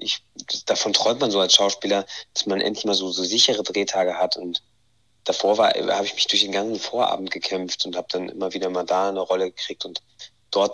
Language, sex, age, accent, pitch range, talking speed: German, male, 30-49, German, 95-110 Hz, 205 wpm